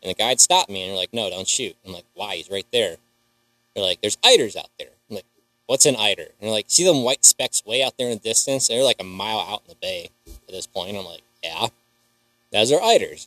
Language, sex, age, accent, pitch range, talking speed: English, male, 20-39, American, 120-145 Hz, 270 wpm